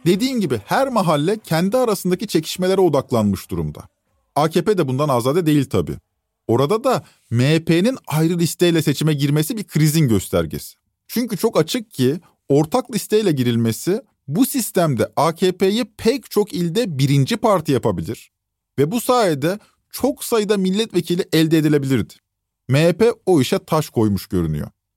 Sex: male